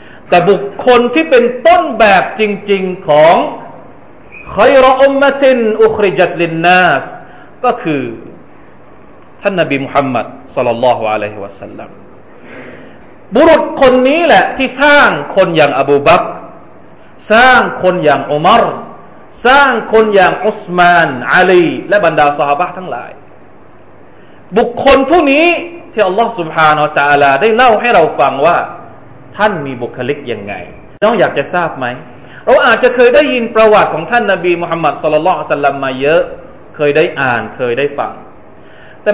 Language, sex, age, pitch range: Thai, male, 40-59, 150-240 Hz